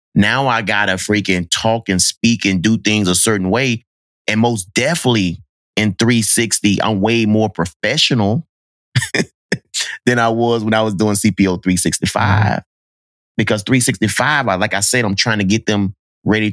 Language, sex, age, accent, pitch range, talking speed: English, male, 30-49, American, 80-105 Hz, 160 wpm